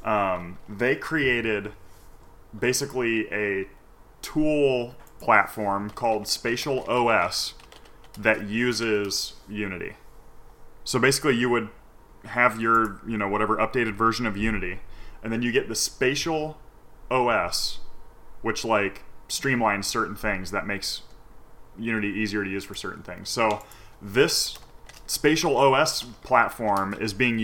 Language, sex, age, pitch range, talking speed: English, male, 20-39, 105-125 Hz, 120 wpm